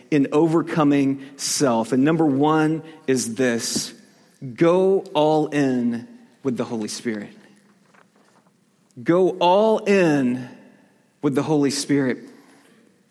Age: 40-59